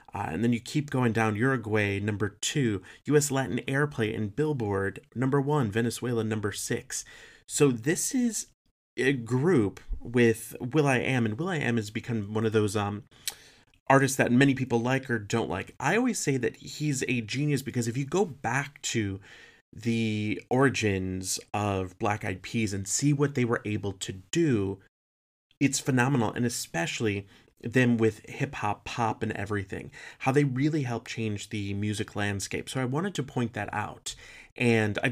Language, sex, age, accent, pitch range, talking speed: English, male, 30-49, American, 105-130 Hz, 175 wpm